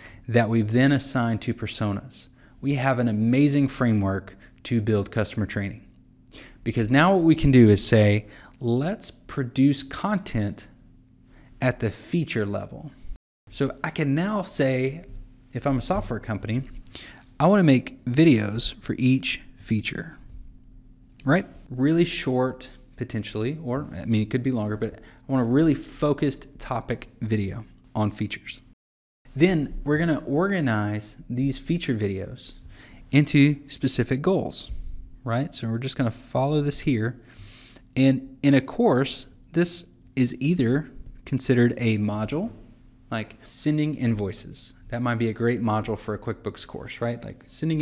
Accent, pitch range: American, 110-140 Hz